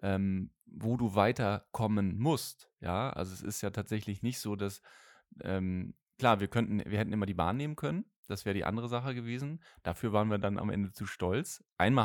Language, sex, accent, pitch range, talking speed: German, male, German, 100-125 Hz, 200 wpm